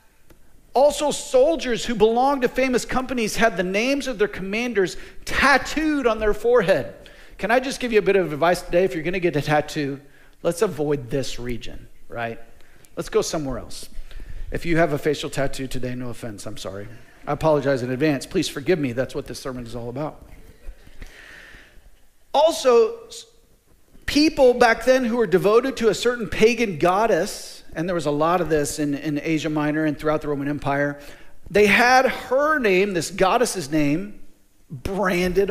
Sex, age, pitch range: male, 40-59, 155-255 Hz